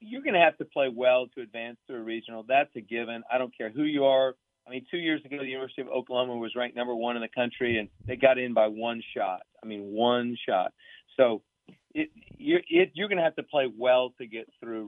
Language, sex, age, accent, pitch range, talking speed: English, male, 40-59, American, 115-140 Hz, 240 wpm